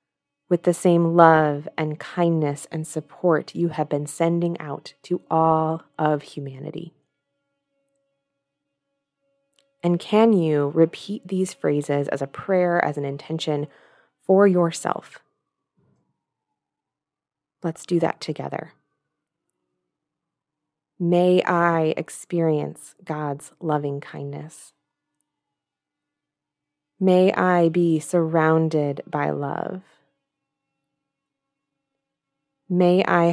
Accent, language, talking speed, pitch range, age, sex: American, English, 90 wpm, 145-180 Hz, 20-39, female